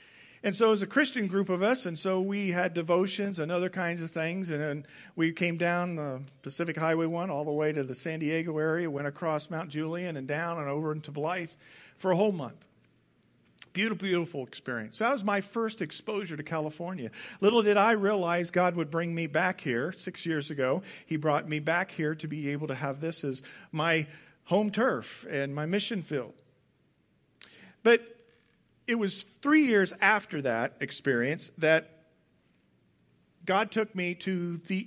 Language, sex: English, male